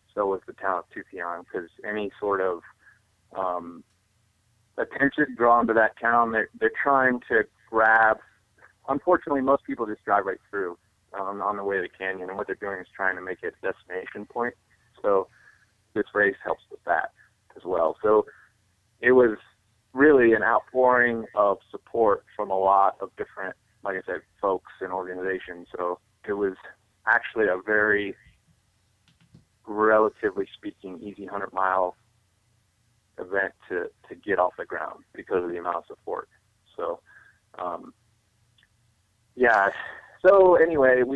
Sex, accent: male, American